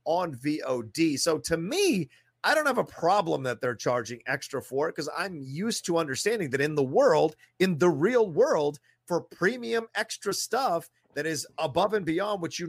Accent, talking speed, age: American, 190 wpm, 30-49